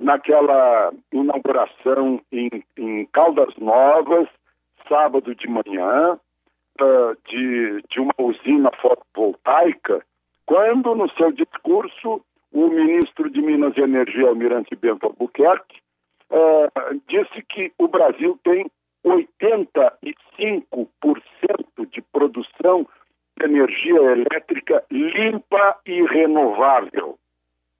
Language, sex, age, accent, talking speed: Portuguese, male, 60-79, Brazilian, 90 wpm